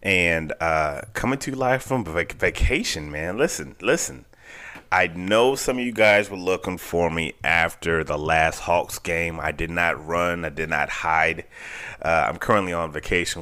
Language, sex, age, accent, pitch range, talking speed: English, male, 30-49, American, 80-100 Hz, 175 wpm